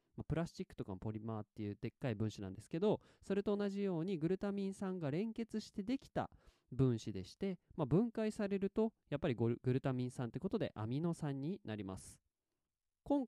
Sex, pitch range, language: male, 115-175 Hz, Japanese